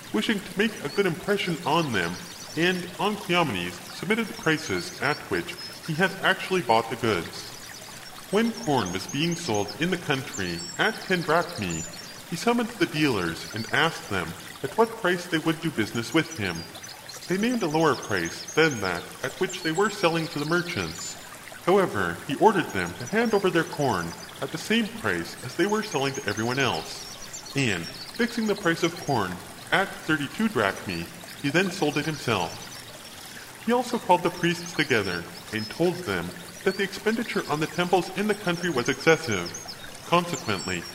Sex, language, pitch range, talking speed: female, English, 125-190 Hz, 175 wpm